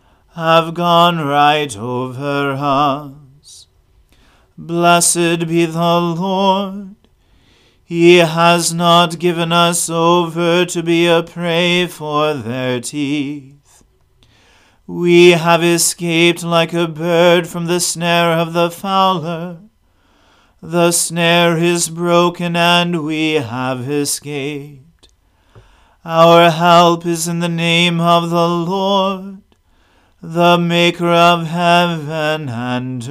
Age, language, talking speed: 40-59, English, 100 wpm